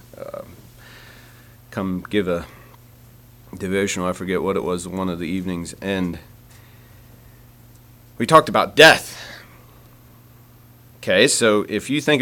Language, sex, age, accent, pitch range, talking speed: English, male, 40-59, American, 120-140 Hz, 120 wpm